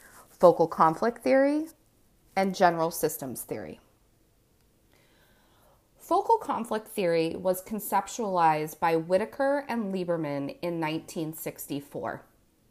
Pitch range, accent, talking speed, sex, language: 155-210 Hz, American, 85 wpm, female, English